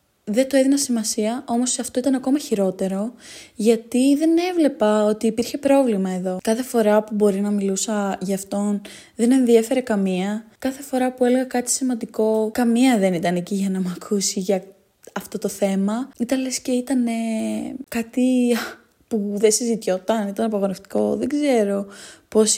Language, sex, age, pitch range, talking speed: Greek, female, 20-39, 200-265 Hz, 155 wpm